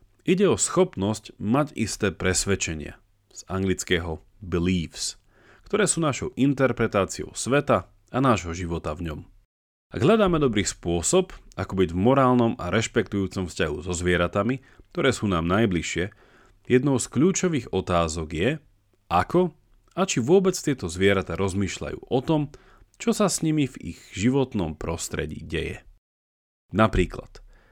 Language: Slovak